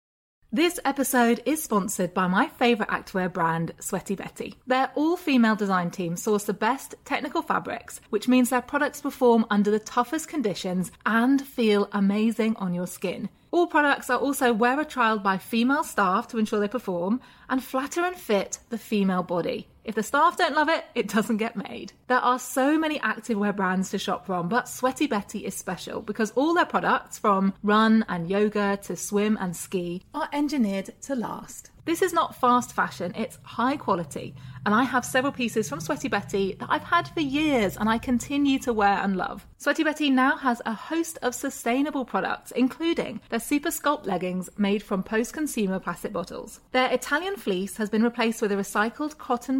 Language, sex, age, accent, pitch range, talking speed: English, female, 30-49, British, 200-270 Hz, 185 wpm